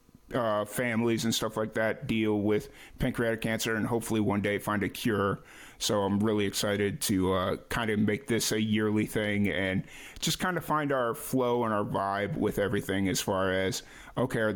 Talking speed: 195 wpm